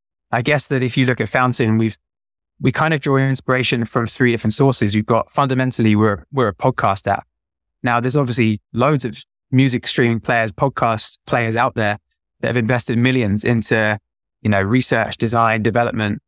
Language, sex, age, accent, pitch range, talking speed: English, male, 20-39, British, 105-130 Hz, 175 wpm